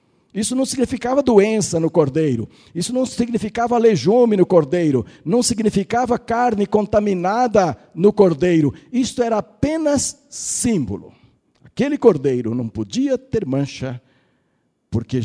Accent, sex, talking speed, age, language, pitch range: Brazilian, male, 115 wpm, 60-79, Portuguese, 140-230 Hz